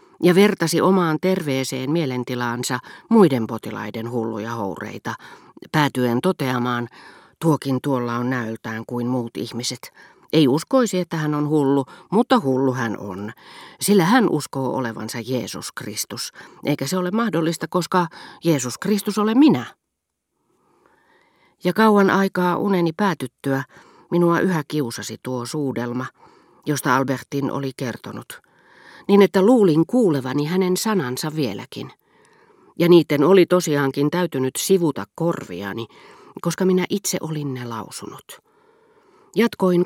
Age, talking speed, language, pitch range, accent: 40-59, 115 wpm, Finnish, 125-180 Hz, native